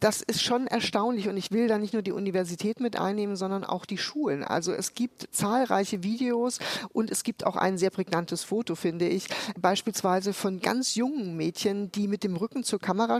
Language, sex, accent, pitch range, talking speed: German, female, German, 185-225 Hz, 200 wpm